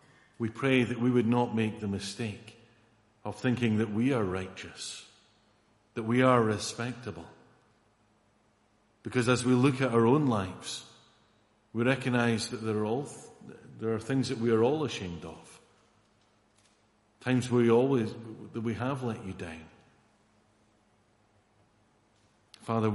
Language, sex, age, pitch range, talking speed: English, male, 50-69, 105-115 Hz, 135 wpm